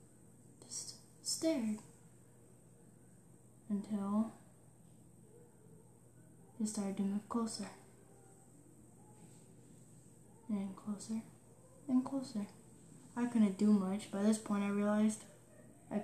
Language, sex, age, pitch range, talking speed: English, female, 10-29, 200-220 Hz, 80 wpm